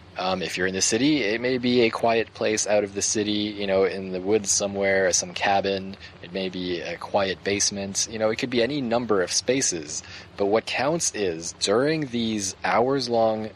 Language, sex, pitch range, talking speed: English, male, 95-115 Hz, 210 wpm